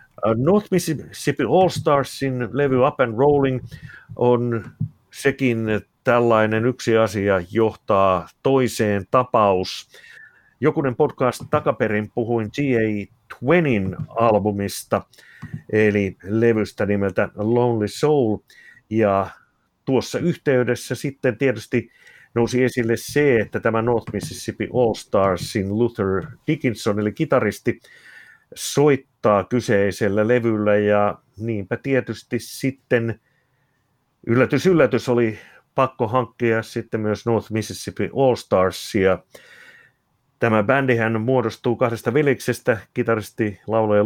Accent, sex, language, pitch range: native, male, Finnish, 105-130 Hz